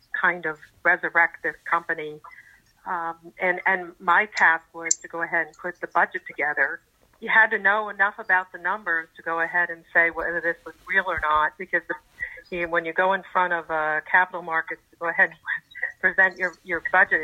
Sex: female